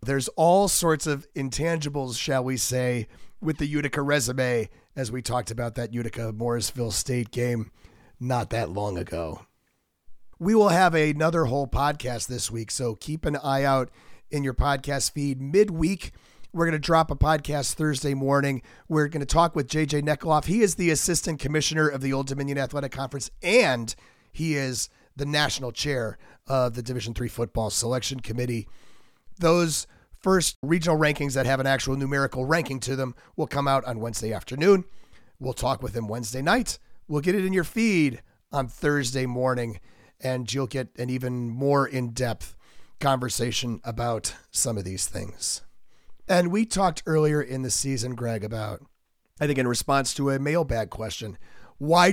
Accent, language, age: American, English, 40-59